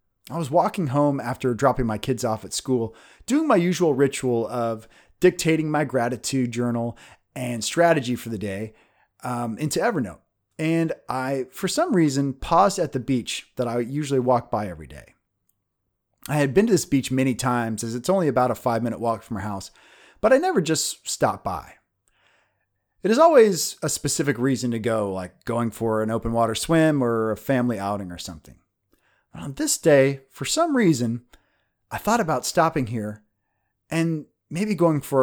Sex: male